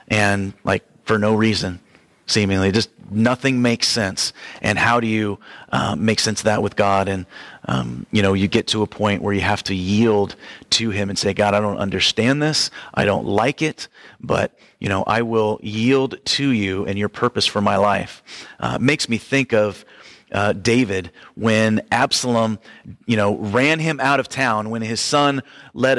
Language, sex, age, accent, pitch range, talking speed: English, male, 30-49, American, 105-125 Hz, 190 wpm